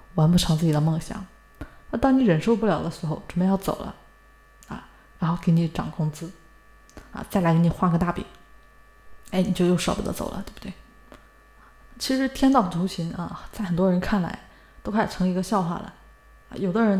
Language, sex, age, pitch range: Chinese, female, 20-39, 160-200 Hz